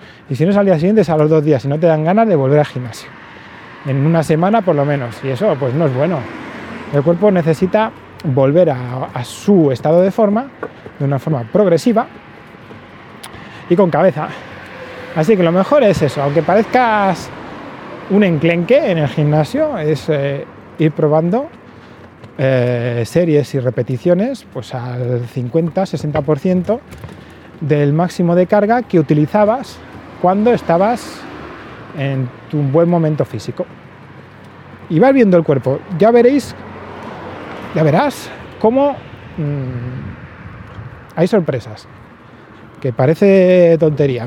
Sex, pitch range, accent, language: male, 135-180 Hz, Spanish, Spanish